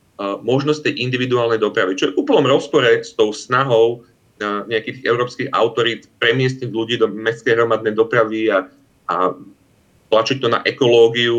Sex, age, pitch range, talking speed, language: male, 30-49, 115-145 Hz, 130 wpm, Slovak